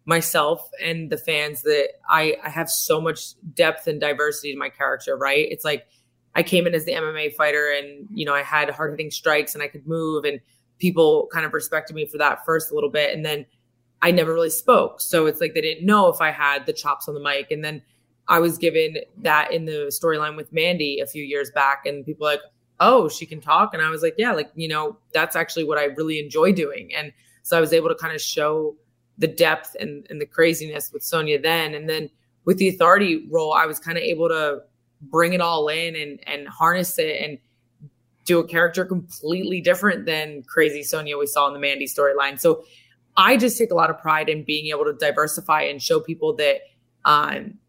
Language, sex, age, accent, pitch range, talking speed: English, female, 20-39, American, 145-170 Hz, 225 wpm